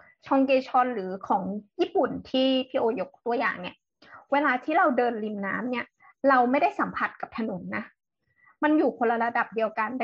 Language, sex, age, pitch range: Thai, female, 20-39, 225-275 Hz